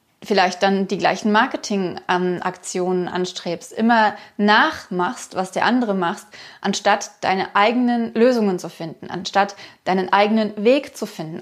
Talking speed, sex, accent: 125 wpm, female, German